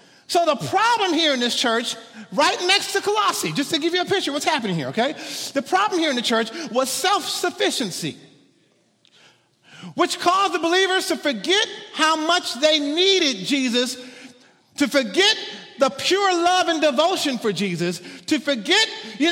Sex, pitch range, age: male, 275-375 Hz, 50-69